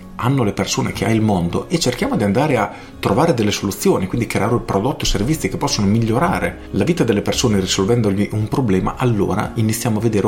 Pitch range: 100-130 Hz